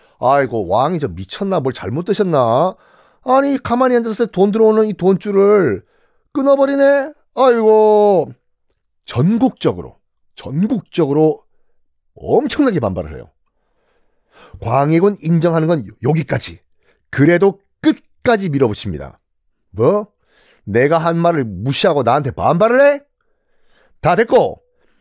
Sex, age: male, 40-59